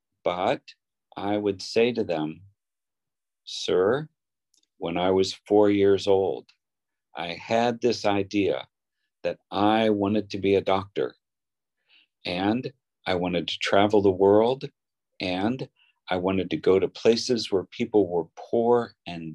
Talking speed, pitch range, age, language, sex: 135 wpm, 95-120 Hz, 50-69, Vietnamese, male